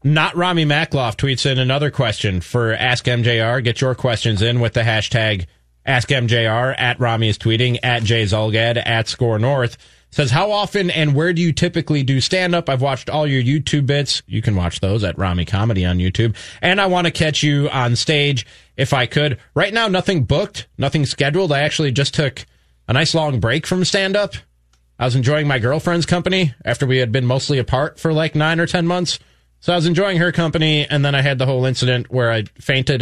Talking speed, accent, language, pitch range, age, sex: 210 wpm, American, English, 110-145 Hz, 30-49, male